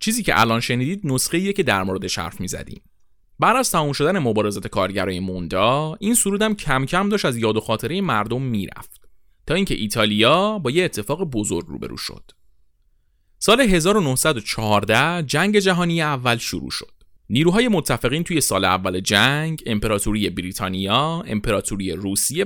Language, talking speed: Persian, 140 wpm